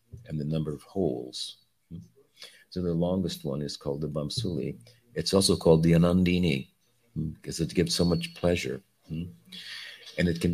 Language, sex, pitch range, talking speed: English, male, 75-100 Hz, 155 wpm